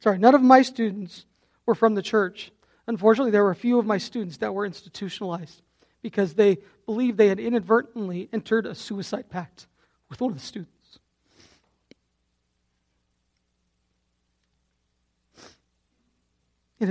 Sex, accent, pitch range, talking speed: male, American, 165-230 Hz, 130 wpm